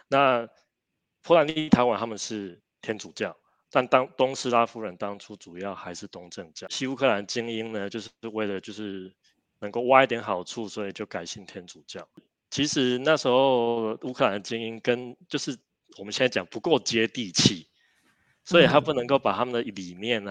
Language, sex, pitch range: Chinese, male, 100-120 Hz